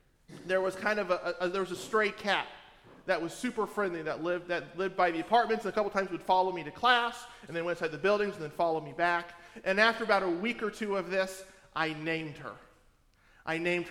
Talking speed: 240 wpm